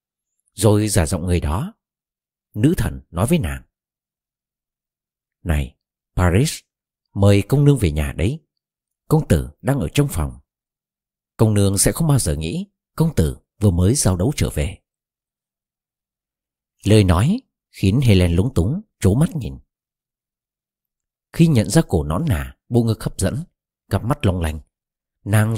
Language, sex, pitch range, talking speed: Vietnamese, male, 85-130 Hz, 150 wpm